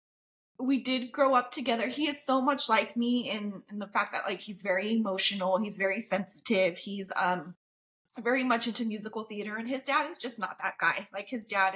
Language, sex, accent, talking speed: English, female, American, 210 wpm